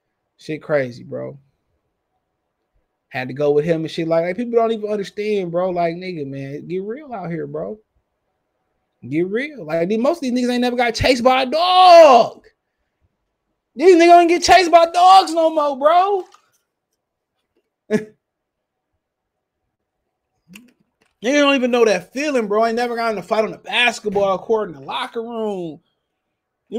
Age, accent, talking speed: 20-39, American, 160 wpm